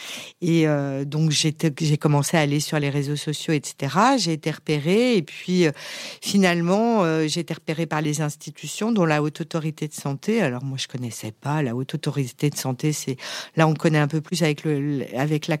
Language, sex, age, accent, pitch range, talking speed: French, female, 50-69, French, 145-170 Hz, 205 wpm